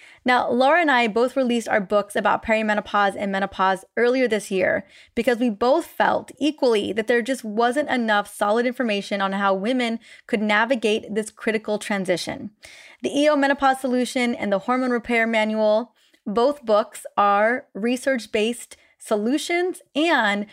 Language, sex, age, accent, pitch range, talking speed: English, female, 20-39, American, 210-255 Hz, 145 wpm